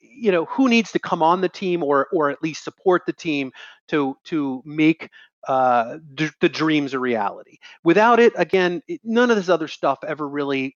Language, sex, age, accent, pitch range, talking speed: English, male, 30-49, American, 135-165 Hz, 200 wpm